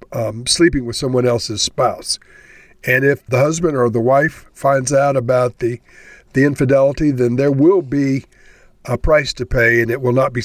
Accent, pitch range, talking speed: American, 120-145 Hz, 185 wpm